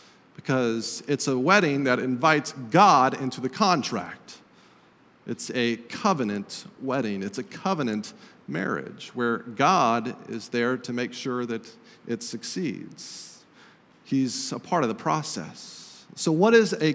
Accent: American